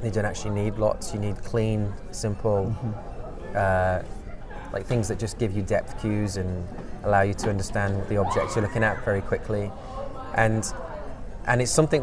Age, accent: 20-39, British